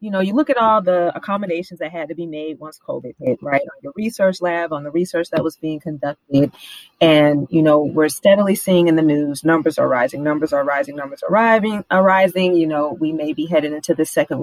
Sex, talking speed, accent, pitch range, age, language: female, 230 wpm, American, 150-185 Hz, 30-49, English